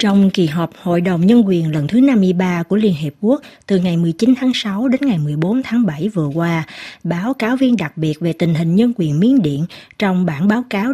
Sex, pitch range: female, 165-225 Hz